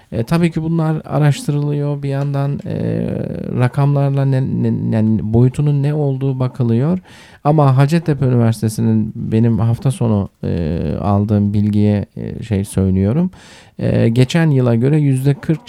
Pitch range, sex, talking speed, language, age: 100-140 Hz, male, 125 wpm, Turkish, 50-69